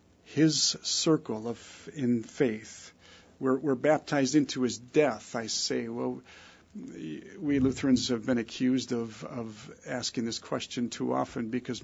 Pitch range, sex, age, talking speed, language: 115-135 Hz, male, 50-69, 135 wpm, English